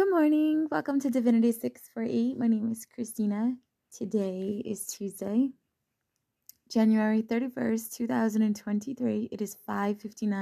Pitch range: 185-225 Hz